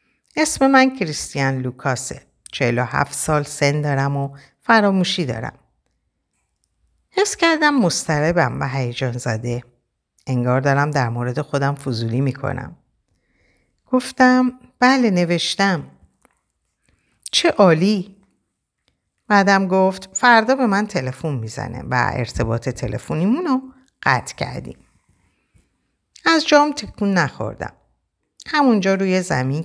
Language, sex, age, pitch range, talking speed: Persian, female, 50-69, 130-200 Hz, 100 wpm